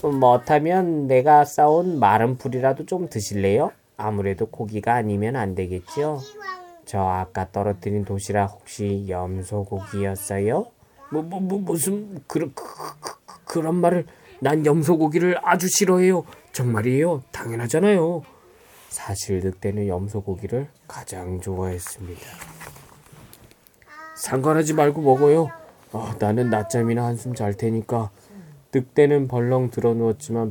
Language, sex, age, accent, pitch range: Korean, male, 20-39, native, 105-150 Hz